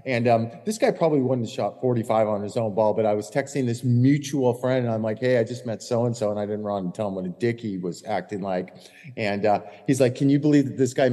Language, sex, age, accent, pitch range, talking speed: English, male, 40-59, American, 105-130 Hz, 280 wpm